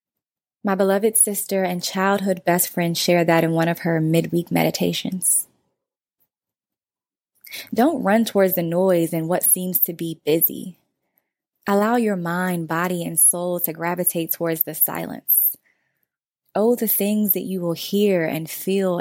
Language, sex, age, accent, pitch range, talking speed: English, female, 20-39, American, 175-210 Hz, 145 wpm